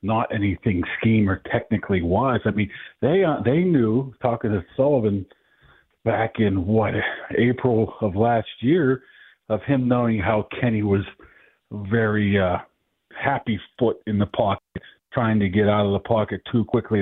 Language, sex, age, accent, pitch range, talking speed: English, male, 50-69, American, 100-115 Hz, 155 wpm